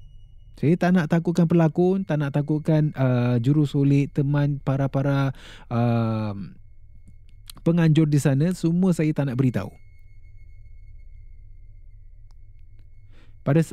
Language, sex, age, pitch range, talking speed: Malay, male, 30-49, 100-140 Hz, 100 wpm